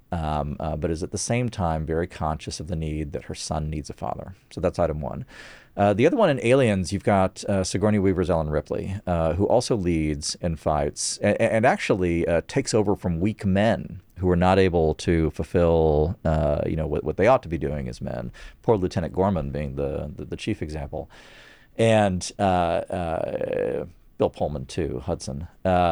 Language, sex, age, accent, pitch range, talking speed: English, male, 40-59, American, 80-95 Hz, 200 wpm